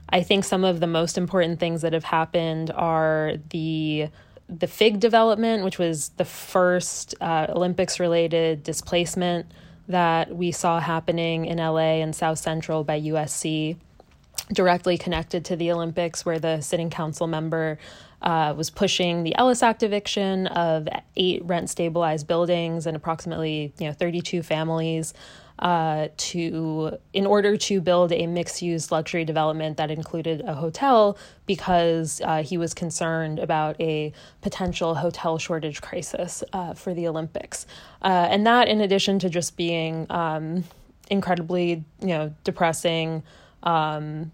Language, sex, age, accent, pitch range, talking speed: English, female, 20-39, American, 160-180 Hz, 140 wpm